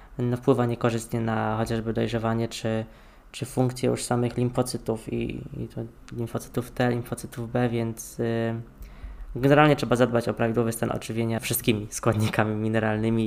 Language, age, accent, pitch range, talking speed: Polish, 20-39, native, 115-125 Hz, 135 wpm